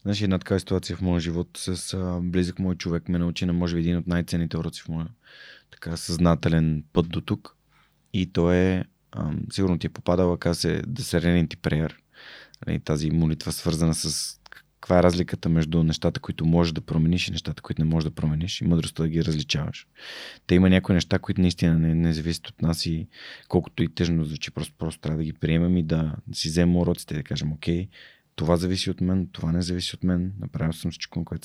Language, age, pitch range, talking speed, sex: Bulgarian, 30-49, 80-95 Hz, 215 wpm, male